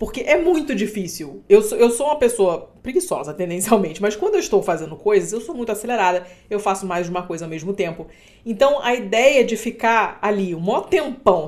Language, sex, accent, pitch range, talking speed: Portuguese, female, Brazilian, 195-255 Hz, 205 wpm